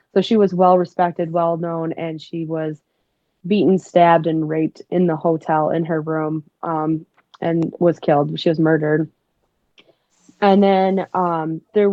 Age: 20-39